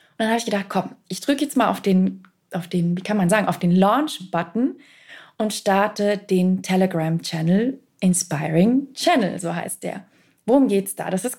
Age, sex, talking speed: 20-39, female, 175 wpm